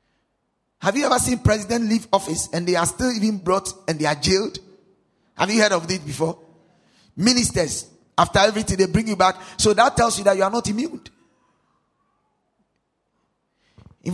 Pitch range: 185-255 Hz